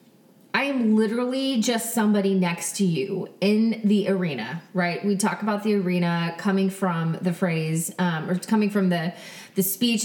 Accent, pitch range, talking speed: American, 180-215 Hz, 175 wpm